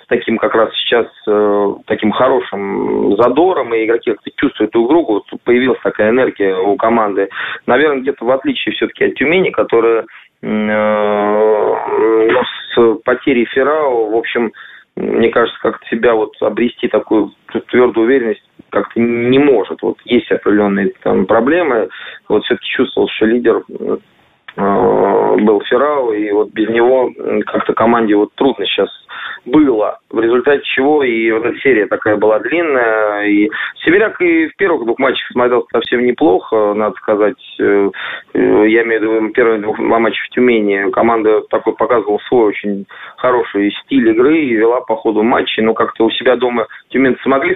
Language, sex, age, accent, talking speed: Russian, male, 20-39, native, 155 wpm